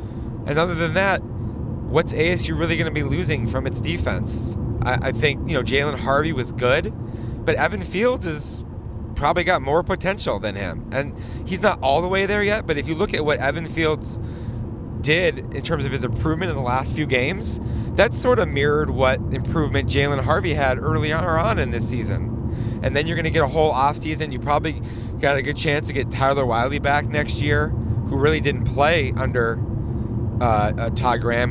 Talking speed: 200 wpm